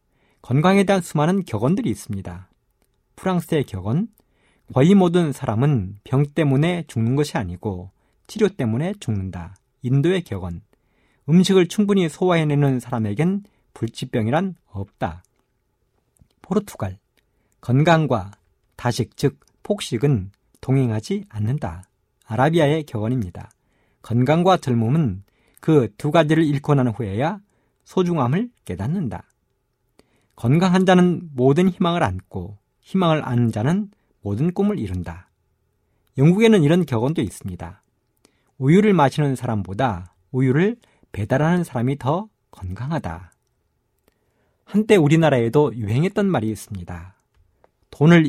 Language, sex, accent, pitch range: Korean, male, native, 110-165 Hz